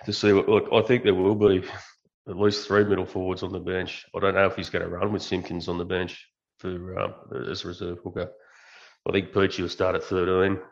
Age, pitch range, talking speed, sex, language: 30-49, 90-100 Hz, 240 wpm, male, English